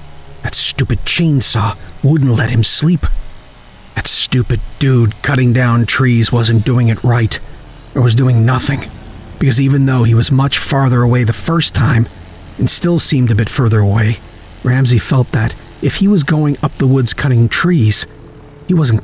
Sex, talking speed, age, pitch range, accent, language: male, 165 wpm, 40-59, 110-140 Hz, American, English